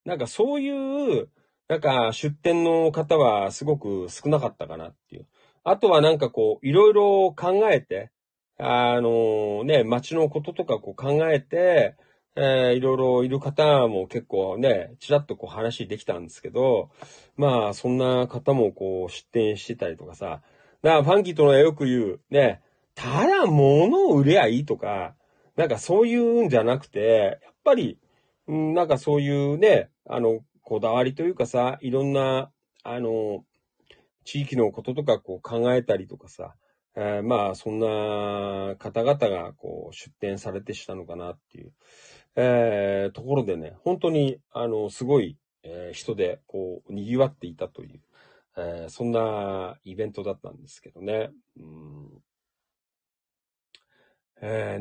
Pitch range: 105-150 Hz